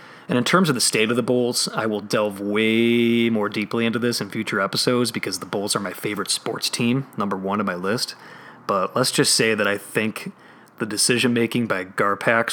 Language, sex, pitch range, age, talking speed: English, male, 105-125 Hz, 30-49, 215 wpm